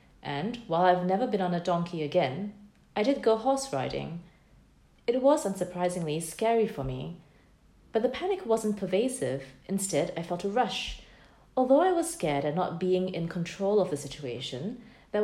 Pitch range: 165-240 Hz